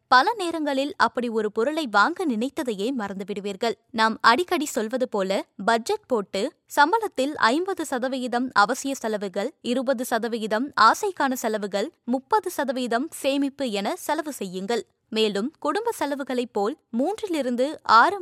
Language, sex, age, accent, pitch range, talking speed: Tamil, female, 20-39, native, 220-300 Hz, 105 wpm